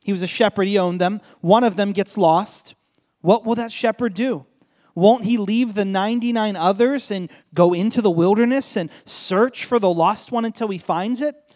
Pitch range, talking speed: 210-270 Hz, 195 wpm